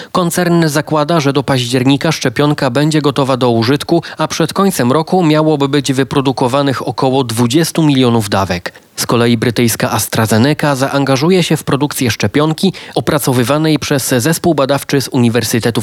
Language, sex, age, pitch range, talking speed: Polish, male, 30-49, 125-150 Hz, 135 wpm